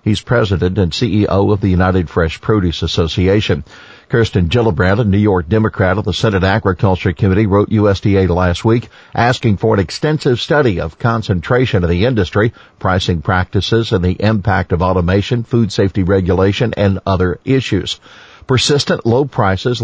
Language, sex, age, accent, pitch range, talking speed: English, male, 50-69, American, 95-120 Hz, 155 wpm